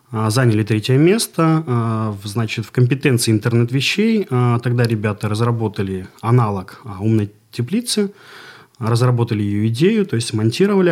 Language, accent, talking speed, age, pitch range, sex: Russian, native, 105 wpm, 30-49, 110-140 Hz, male